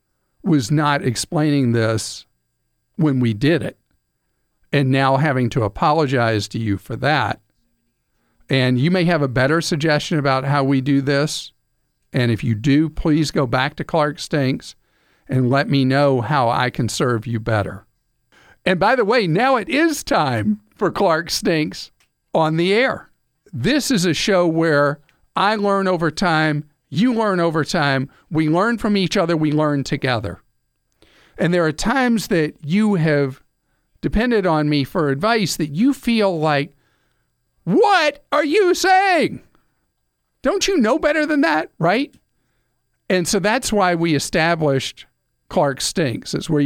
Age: 50-69